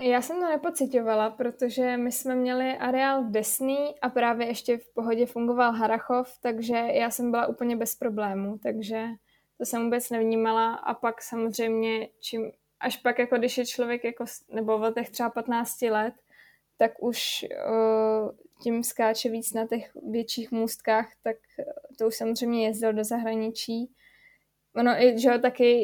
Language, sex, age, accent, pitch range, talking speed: Czech, female, 20-39, native, 220-240 Hz, 155 wpm